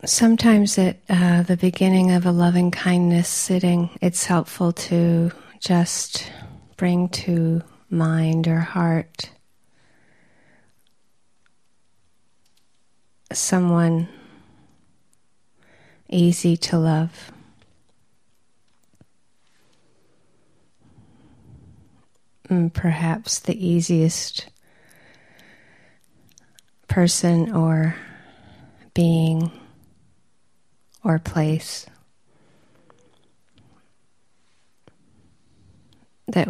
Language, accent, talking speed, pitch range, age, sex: English, American, 50 wpm, 165-185 Hz, 40-59, female